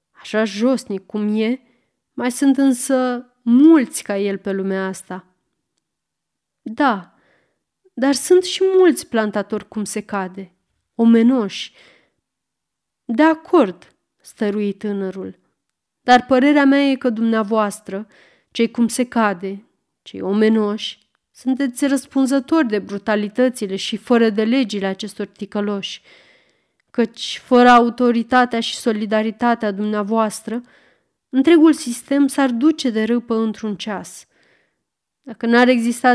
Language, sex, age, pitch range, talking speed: Romanian, female, 30-49, 210-255 Hz, 110 wpm